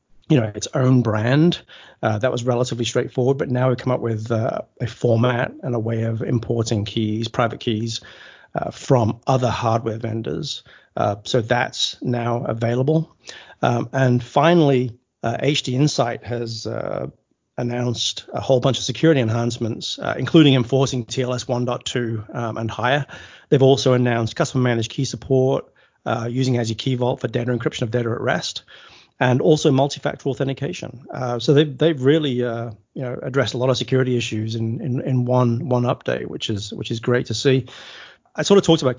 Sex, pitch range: male, 115-135 Hz